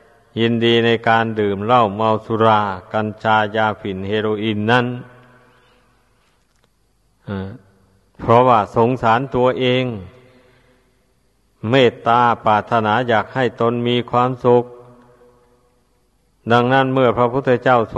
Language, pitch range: Thai, 110-125 Hz